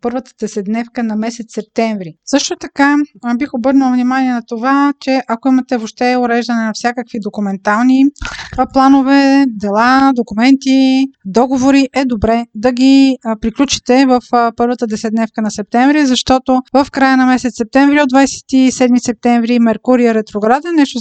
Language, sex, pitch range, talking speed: Bulgarian, female, 230-265 Hz, 135 wpm